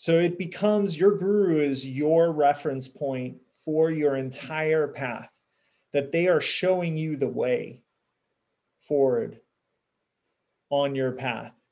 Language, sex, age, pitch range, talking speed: English, male, 30-49, 130-165 Hz, 125 wpm